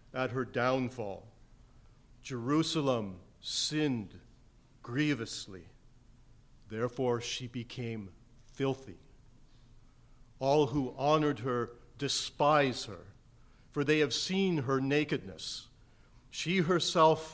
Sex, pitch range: male, 120-160 Hz